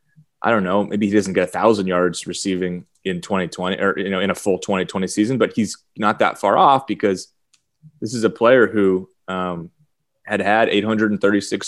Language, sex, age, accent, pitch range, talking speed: English, male, 20-39, American, 95-110 Hz, 190 wpm